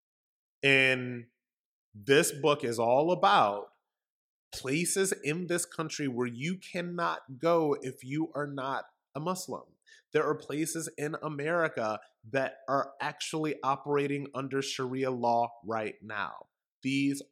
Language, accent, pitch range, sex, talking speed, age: English, American, 120-145 Hz, male, 120 wpm, 20-39